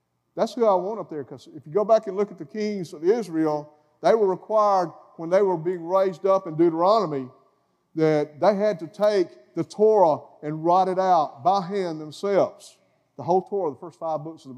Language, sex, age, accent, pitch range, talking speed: English, male, 50-69, American, 145-190 Hz, 215 wpm